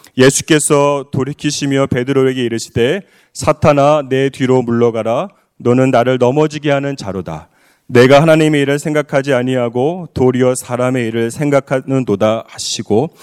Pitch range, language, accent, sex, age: 140-190 Hz, Korean, native, male, 30-49